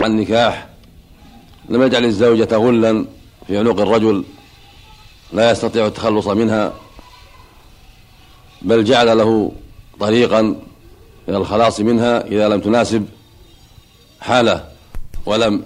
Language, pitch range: Arabic, 100-115 Hz